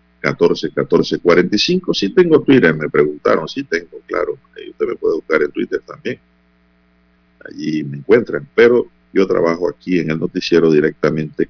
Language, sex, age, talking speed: Spanish, male, 50-69, 165 wpm